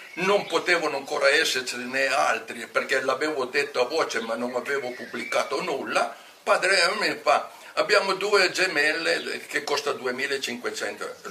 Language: Italian